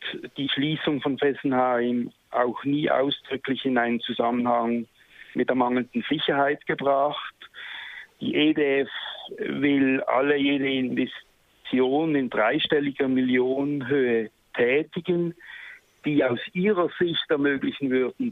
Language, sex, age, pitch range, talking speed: German, male, 60-79, 120-150 Hz, 100 wpm